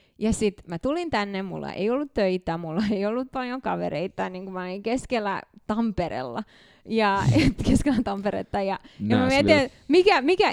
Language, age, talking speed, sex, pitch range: Finnish, 20-39, 150 wpm, female, 175-225 Hz